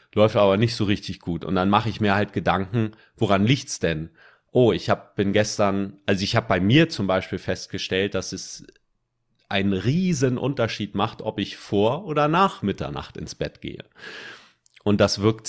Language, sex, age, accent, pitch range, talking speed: German, male, 30-49, German, 95-115 Hz, 180 wpm